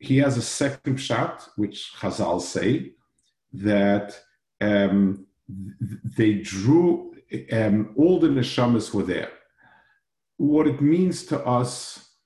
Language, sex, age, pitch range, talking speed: English, male, 50-69, 100-130 Hz, 115 wpm